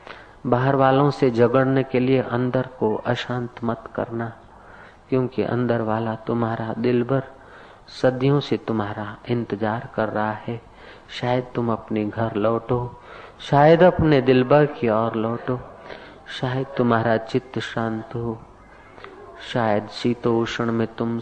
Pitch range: 110-130 Hz